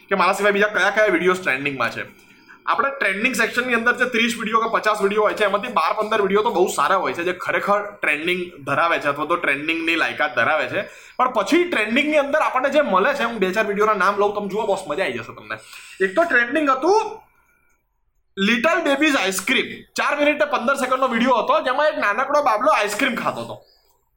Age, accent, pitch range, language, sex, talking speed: 20-39, native, 195-275 Hz, Gujarati, male, 70 wpm